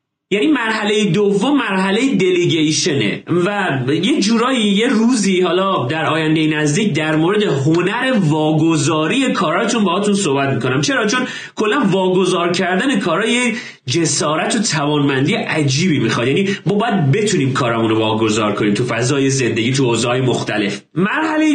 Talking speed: 135 wpm